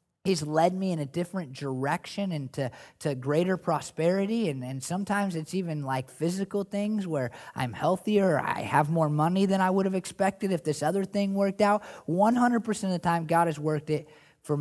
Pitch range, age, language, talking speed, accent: 135-185 Hz, 20-39, English, 195 wpm, American